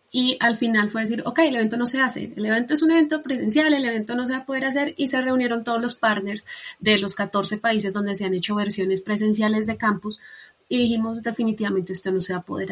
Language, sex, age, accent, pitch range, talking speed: Spanish, female, 20-39, Colombian, 200-230 Hz, 245 wpm